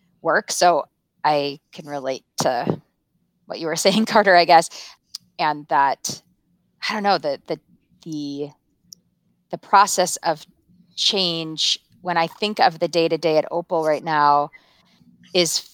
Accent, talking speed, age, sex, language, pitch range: American, 145 wpm, 30-49, female, English, 160-190 Hz